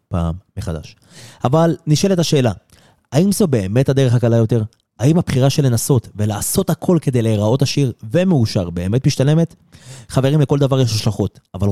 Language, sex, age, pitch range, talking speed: Hebrew, male, 30-49, 105-140 Hz, 150 wpm